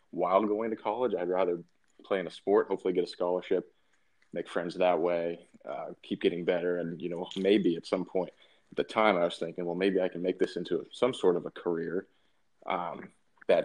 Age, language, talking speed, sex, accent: 30-49, English, 215 wpm, male, American